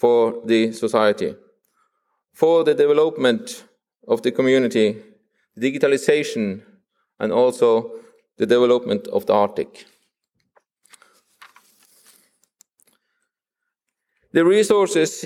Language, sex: English, male